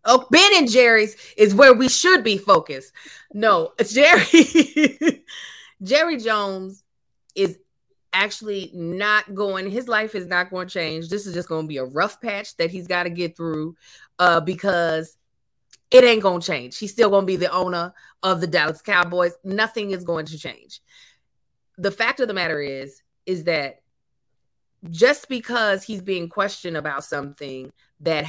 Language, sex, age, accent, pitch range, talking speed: English, female, 20-39, American, 165-240 Hz, 170 wpm